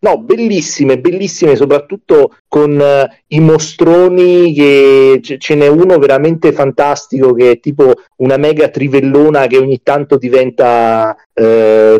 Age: 40-59